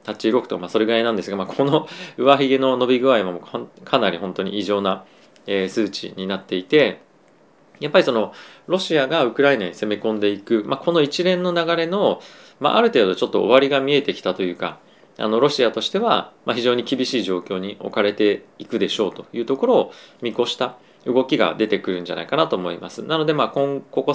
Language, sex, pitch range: Japanese, male, 105-140 Hz